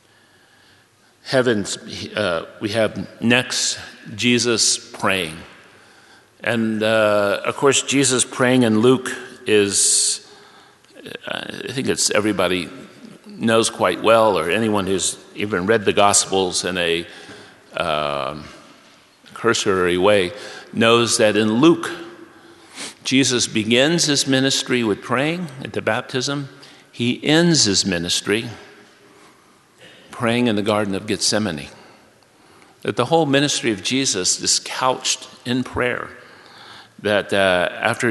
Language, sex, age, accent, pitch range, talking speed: English, male, 50-69, American, 100-125 Hz, 110 wpm